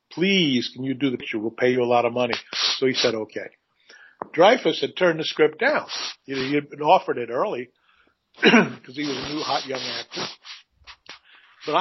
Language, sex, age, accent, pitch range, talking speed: English, male, 50-69, American, 125-145 Hz, 205 wpm